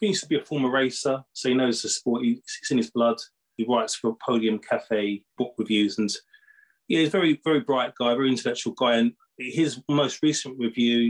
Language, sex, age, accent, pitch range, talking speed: English, male, 20-39, British, 110-145 Hz, 215 wpm